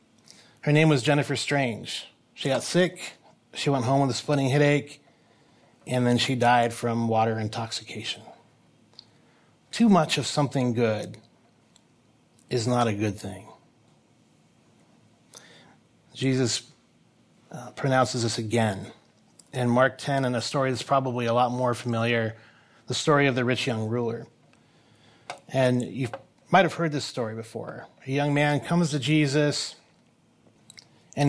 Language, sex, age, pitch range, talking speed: English, male, 30-49, 115-145 Hz, 135 wpm